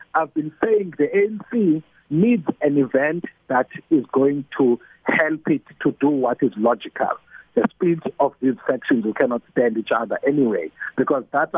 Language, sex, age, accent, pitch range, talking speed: English, male, 60-79, South African, 140-200 Hz, 165 wpm